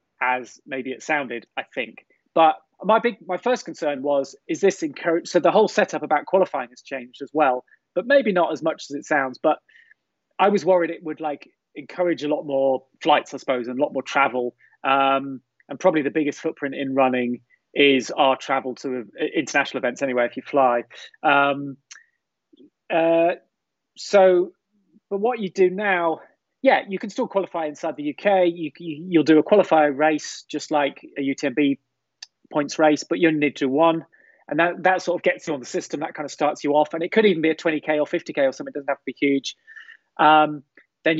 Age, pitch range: 30-49, 140-180 Hz